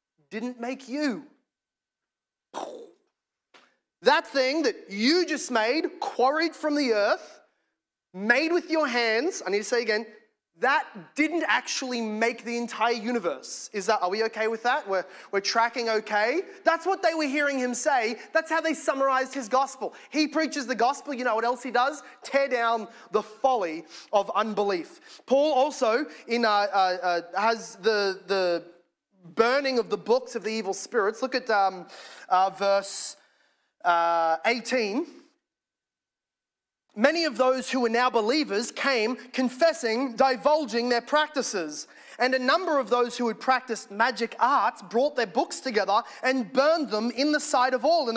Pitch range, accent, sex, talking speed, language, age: 215-280 Hz, Australian, male, 160 wpm, English, 20-39